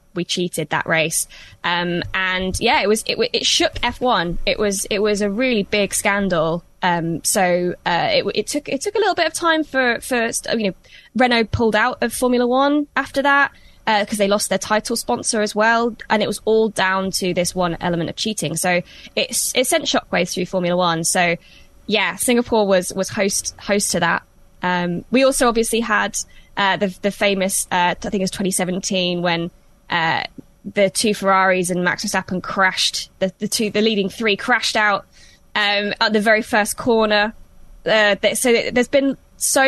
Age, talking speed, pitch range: 10-29, 190 wpm, 185-225 Hz